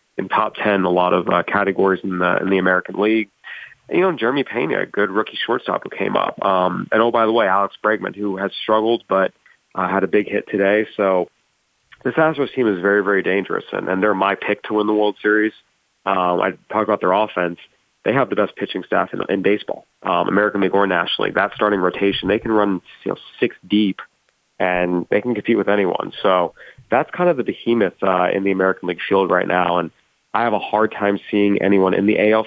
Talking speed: 225 wpm